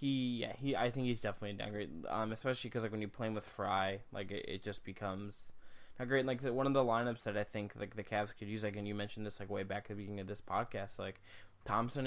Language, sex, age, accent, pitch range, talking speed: English, male, 10-29, American, 100-115 Hz, 285 wpm